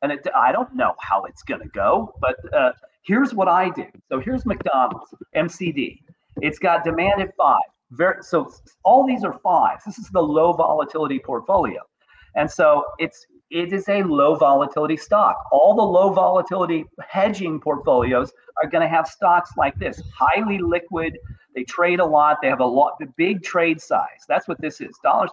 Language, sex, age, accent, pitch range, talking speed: English, male, 40-59, American, 160-210 Hz, 180 wpm